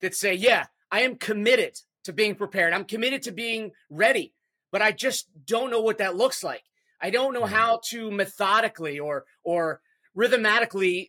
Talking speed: 175 wpm